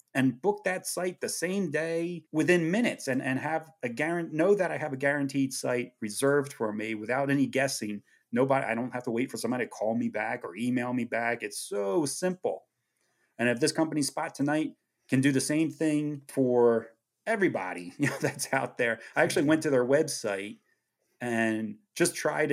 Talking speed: 195 wpm